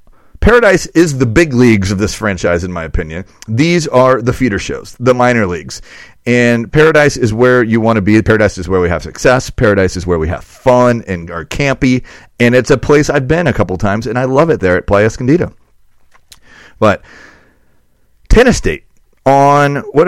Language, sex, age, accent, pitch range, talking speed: English, male, 40-59, American, 95-130 Hz, 190 wpm